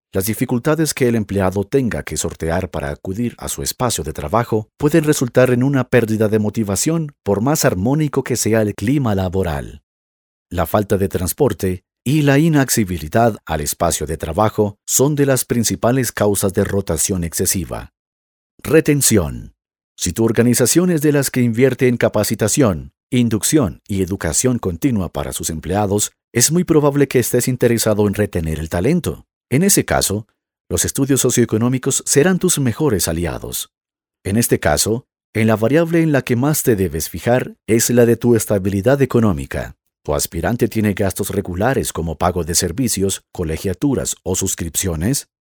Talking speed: 155 wpm